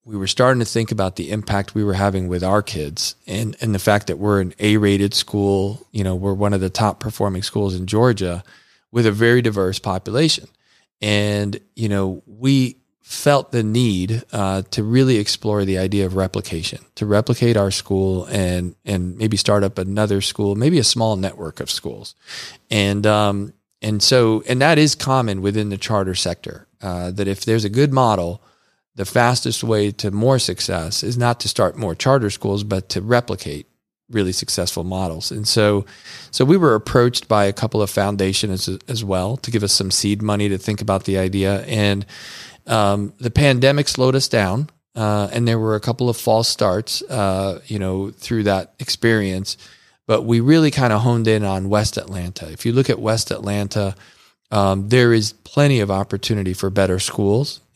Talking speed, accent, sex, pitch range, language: 190 wpm, American, male, 95-115 Hz, English